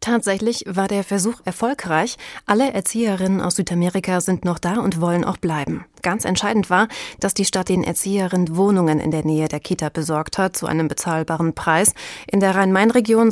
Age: 30-49